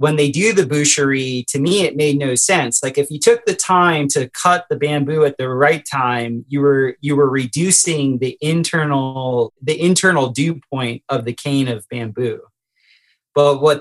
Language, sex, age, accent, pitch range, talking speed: English, male, 30-49, American, 135-155 Hz, 185 wpm